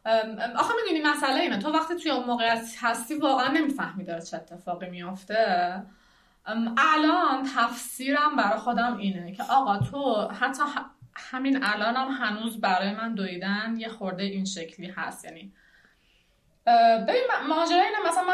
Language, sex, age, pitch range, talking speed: Persian, female, 20-39, 215-310 Hz, 130 wpm